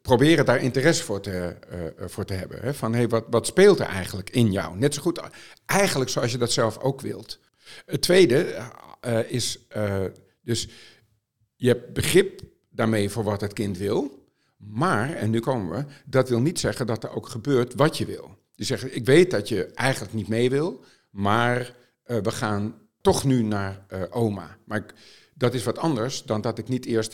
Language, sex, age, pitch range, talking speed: Dutch, male, 50-69, 110-135 Hz, 200 wpm